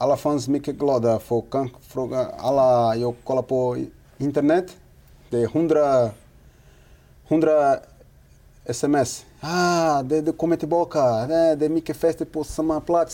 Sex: male